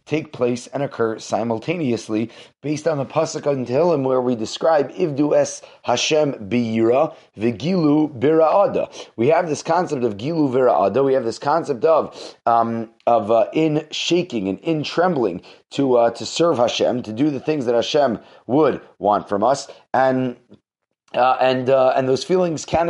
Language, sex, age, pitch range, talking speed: English, male, 30-49, 125-160 Hz, 165 wpm